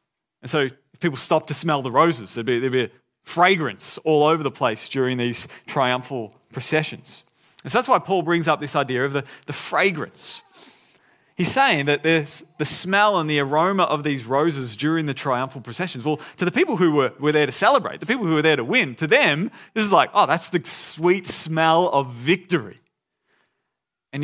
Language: English